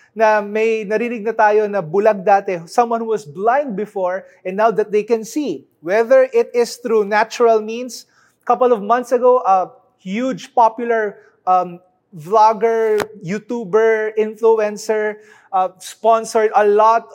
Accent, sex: Filipino, male